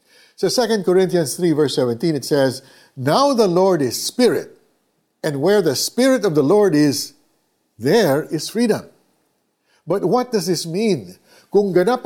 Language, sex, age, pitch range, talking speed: Filipino, male, 50-69, 130-190 Hz, 160 wpm